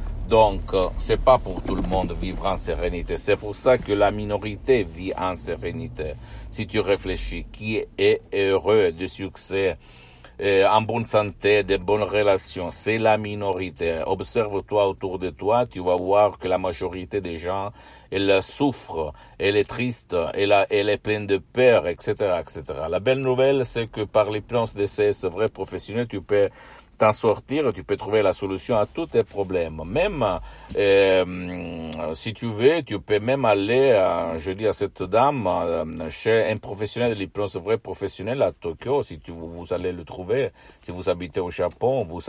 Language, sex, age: Italian, male, 60-79